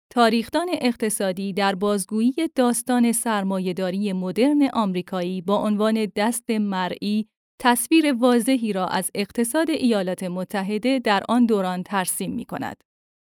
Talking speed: 110 wpm